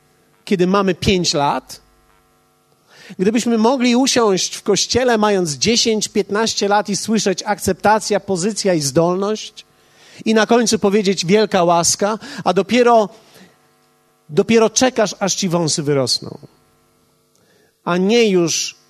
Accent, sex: native, male